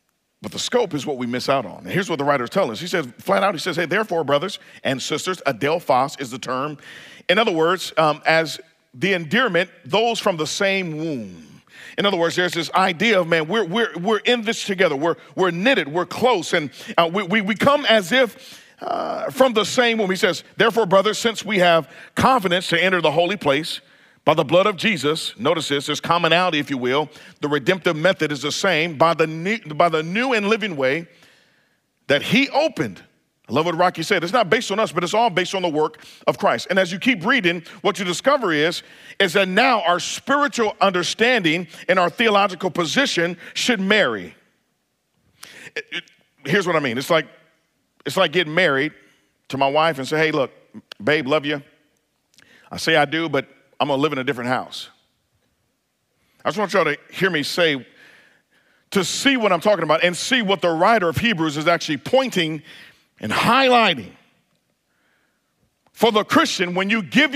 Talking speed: 195 wpm